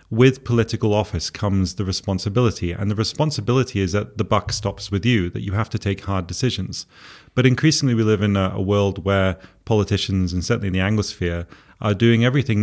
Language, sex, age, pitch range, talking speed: Hungarian, male, 30-49, 95-115 Hz, 195 wpm